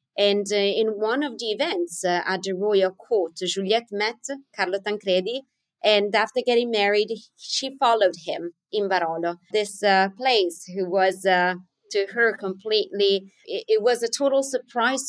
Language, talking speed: English, 160 wpm